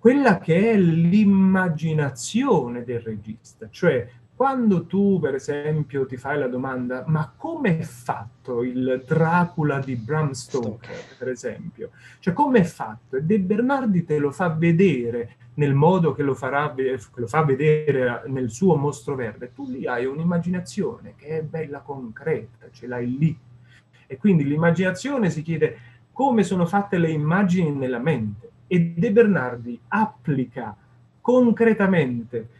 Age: 30-49